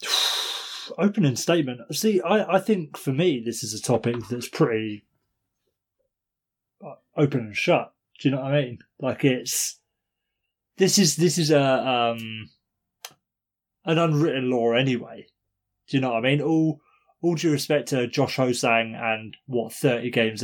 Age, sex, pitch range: 20-39, male, 110-145 Hz